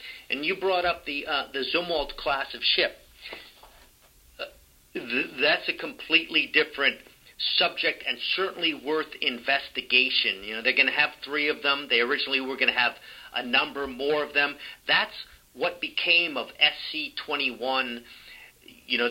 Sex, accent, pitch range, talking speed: male, American, 125-155 Hz, 160 wpm